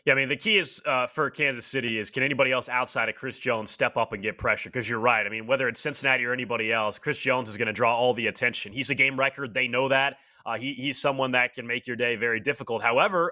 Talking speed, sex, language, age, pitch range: 275 wpm, male, English, 30-49, 130-170 Hz